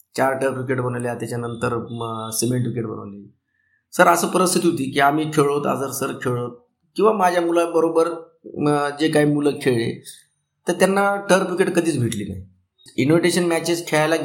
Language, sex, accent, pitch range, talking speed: Marathi, male, native, 115-150 Hz, 155 wpm